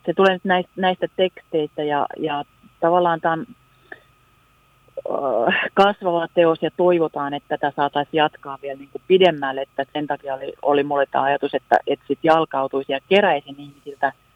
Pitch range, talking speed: 140-175 Hz, 140 wpm